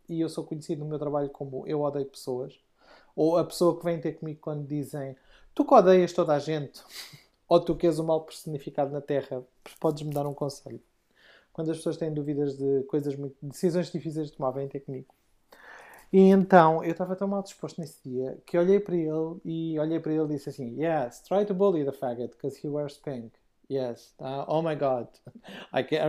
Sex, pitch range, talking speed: male, 135-170 Hz, 205 wpm